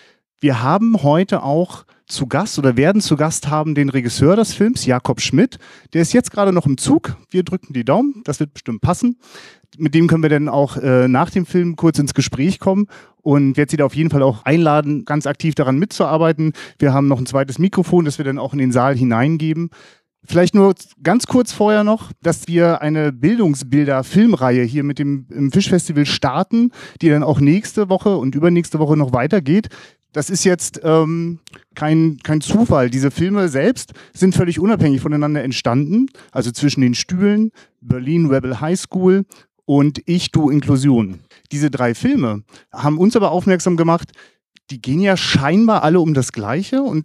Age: 30-49